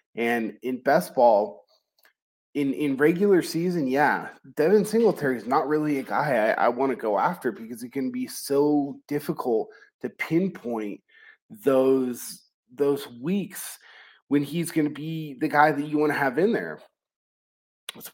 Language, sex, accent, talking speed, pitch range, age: English, male, American, 155 wpm, 125-150 Hz, 30-49